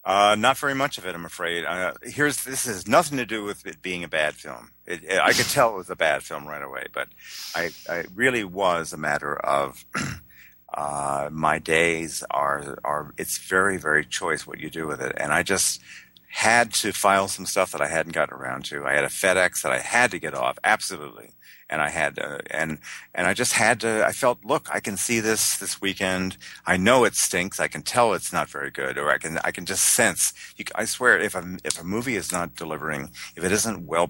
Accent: American